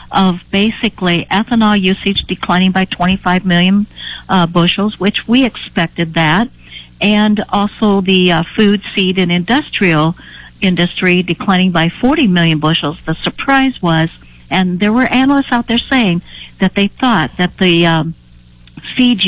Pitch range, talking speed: 160-205 Hz, 140 wpm